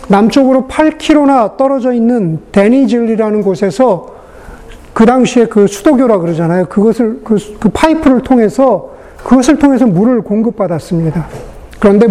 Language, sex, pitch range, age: Korean, male, 195-270 Hz, 40-59